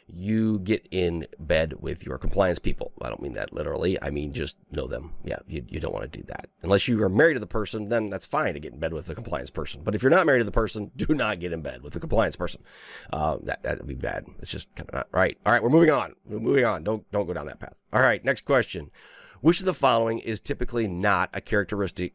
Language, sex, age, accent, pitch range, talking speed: English, male, 30-49, American, 85-110 Hz, 265 wpm